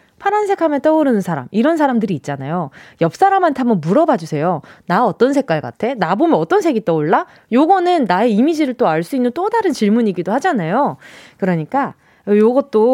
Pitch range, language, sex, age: 190-305 Hz, Korean, female, 20-39